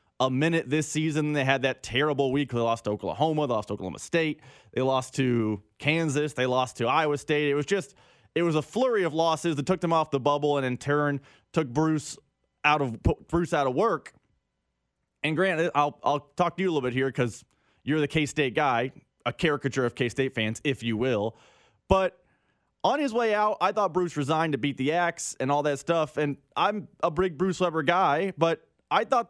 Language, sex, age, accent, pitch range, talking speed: English, male, 20-39, American, 135-180 Hz, 220 wpm